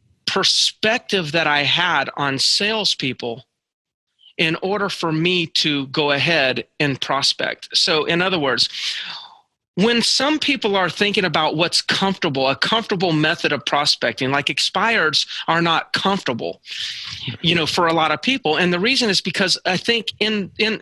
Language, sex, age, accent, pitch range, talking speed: English, male, 40-59, American, 170-225 Hz, 155 wpm